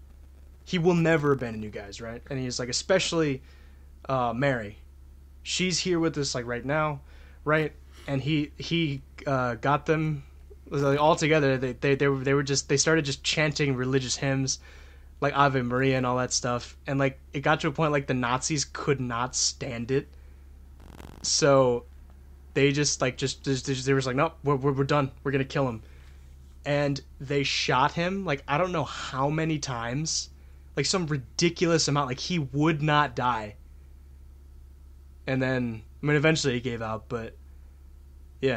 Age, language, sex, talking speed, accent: 20-39, English, male, 175 wpm, American